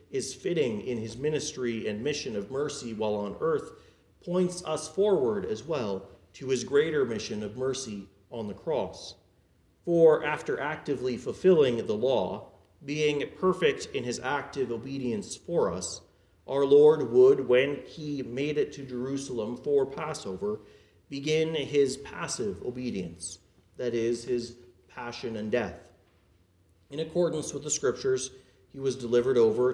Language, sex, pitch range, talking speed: English, male, 110-150 Hz, 140 wpm